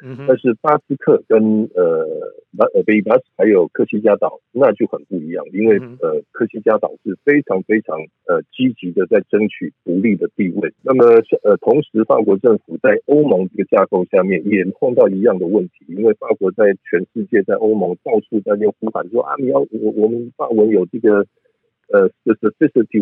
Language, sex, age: Chinese, male, 50-69